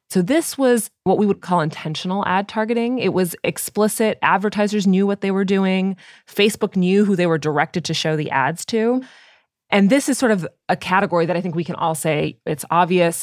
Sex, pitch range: female, 155-200 Hz